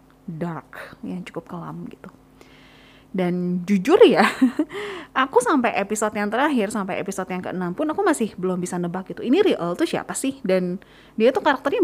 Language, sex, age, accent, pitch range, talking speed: Indonesian, female, 20-39, native, 190-260 Hz, 165 wpm